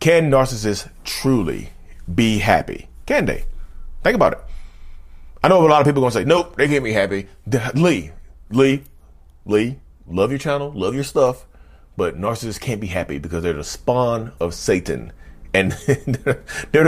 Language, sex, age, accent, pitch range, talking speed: English, male, 30-49, American, 85-125 Hz, 165 wpm